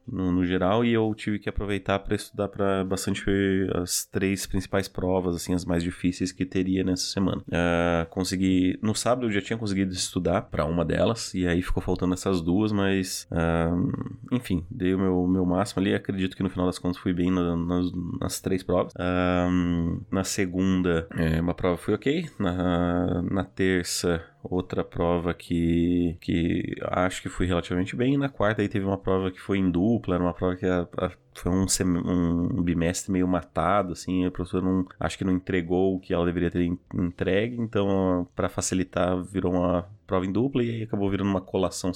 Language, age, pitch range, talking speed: Portuguese, 20-39, 90-95 Hz, 195 wpm